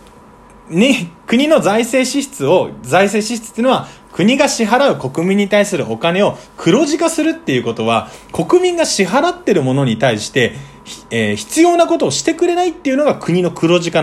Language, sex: Japanese, male